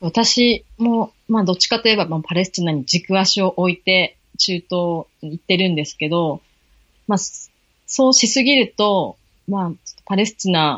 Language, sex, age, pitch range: Japanese, female, 30-49, 155-200 Hz